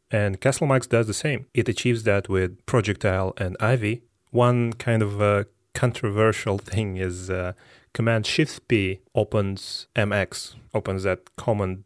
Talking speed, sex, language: 140 wpm, male, English